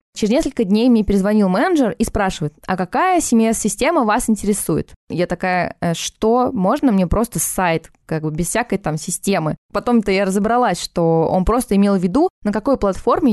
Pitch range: 195-245 Hz